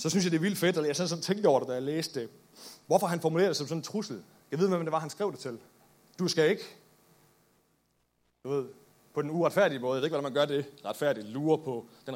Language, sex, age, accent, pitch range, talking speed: Danish, male, 30-49, native, 130-165 Hz, 260 wpm